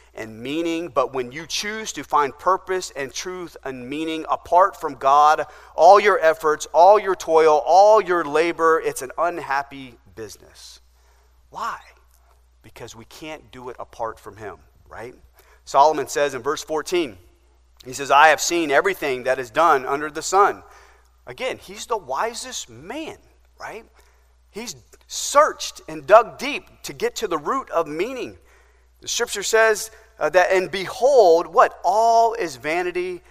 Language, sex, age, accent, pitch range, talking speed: English, male, 30-49, American, 125-200 Hz, 150 wpm